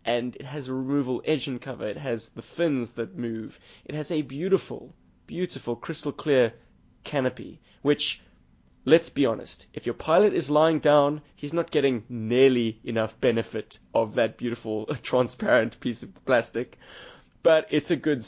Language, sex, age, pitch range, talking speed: English, male, 20-39, 115-150 Hz, 160 wpm